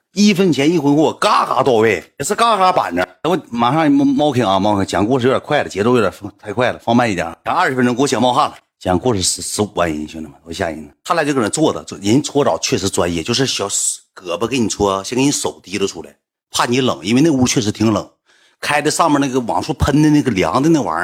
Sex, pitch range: male, 100-140 Hz